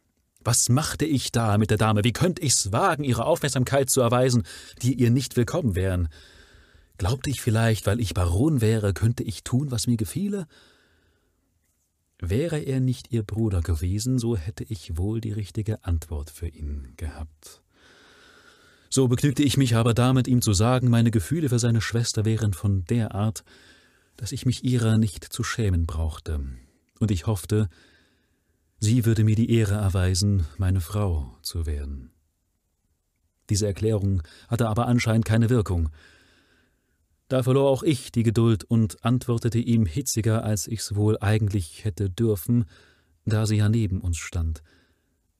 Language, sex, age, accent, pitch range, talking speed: German, male, 40-59, German, 85-115 Hz, 155 wpm